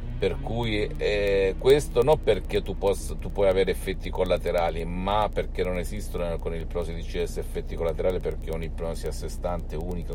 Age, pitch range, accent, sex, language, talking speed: 50-69, 80-100 Hz, native, male, Italian, 175 wpm